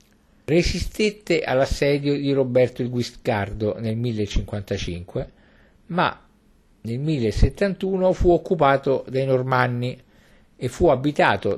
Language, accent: Italian, native